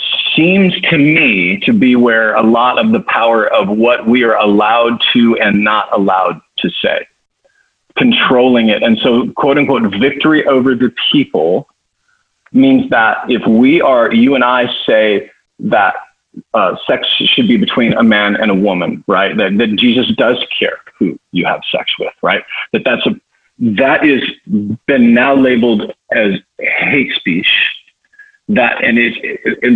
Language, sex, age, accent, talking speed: English, male, 40-59, American, 160 wpm